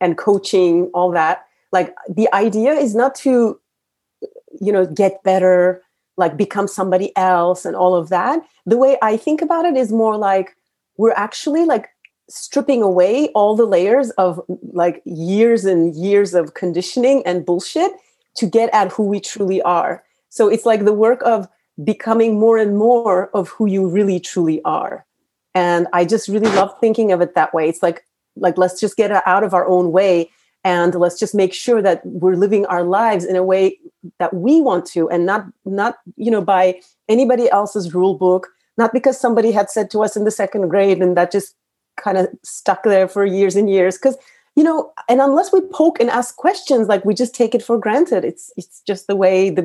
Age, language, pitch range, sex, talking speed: 30-49, English, 185-230 Hz, female, 200 wpm